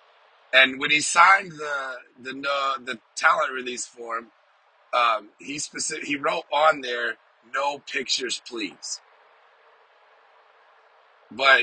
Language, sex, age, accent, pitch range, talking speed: English, male, 30-49, American, 125-140 Hz, 110 wpm